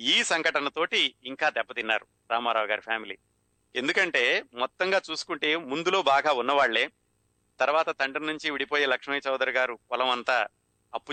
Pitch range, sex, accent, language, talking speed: 120-140 Hz, male, native, Telugu, 125 wpm